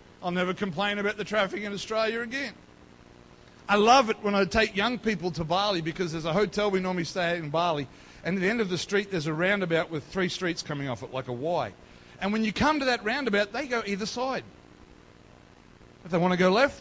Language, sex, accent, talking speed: English, male, Australian, 230 wpm